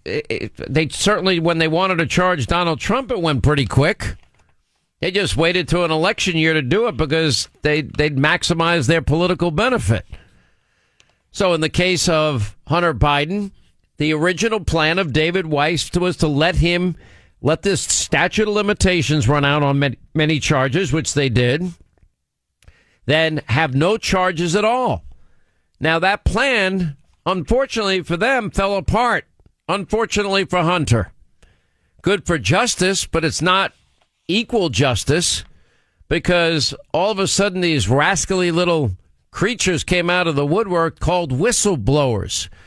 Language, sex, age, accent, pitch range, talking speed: English, male, 50-69, American, 140-180 Hz, 145 wpm